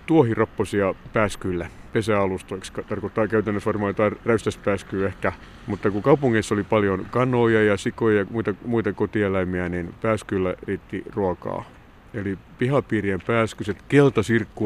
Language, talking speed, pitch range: Finnish, 120 wpm, 95-110 Hz